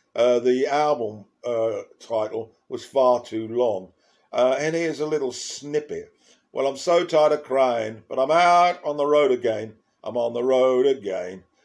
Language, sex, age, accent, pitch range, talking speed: English, male, 50-69, British, 125-160 Hz, 170 wpm